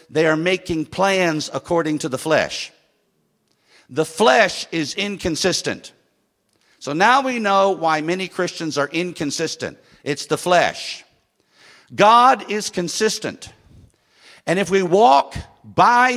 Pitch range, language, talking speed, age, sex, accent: 160-215 Hz, English, 120 wpm, 50-69, male, American